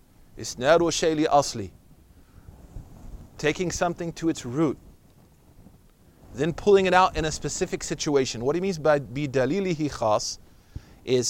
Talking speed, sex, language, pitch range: 115 wpm, male, English, 115-175 Hz